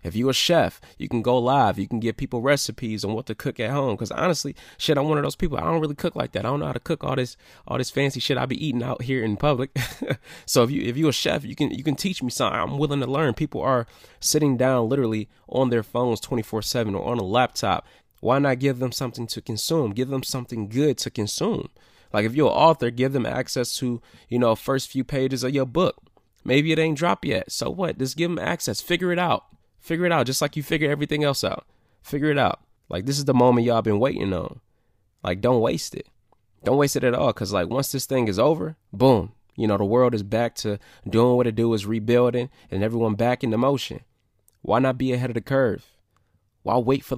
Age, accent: 20-39, American